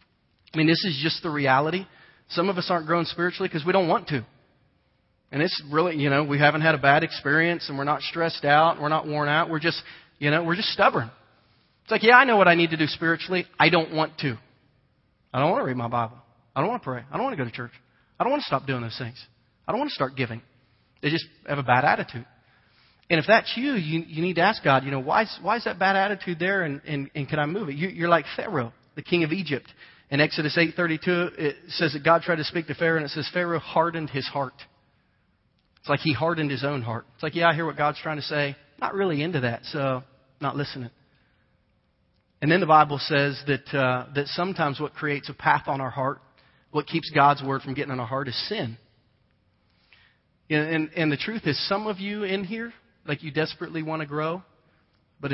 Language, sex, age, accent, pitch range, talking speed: English, male, 30-49, American, 135-170 Hz, 240 wpm